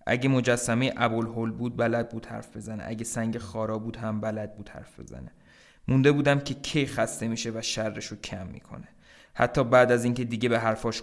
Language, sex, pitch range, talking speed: Persian, male, 110-125 Hz, 195 wpm